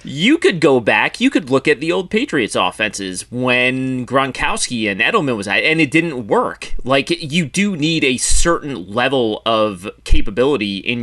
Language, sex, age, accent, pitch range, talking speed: English, male, 30-49, American, 100-135 Hz, 175 wpm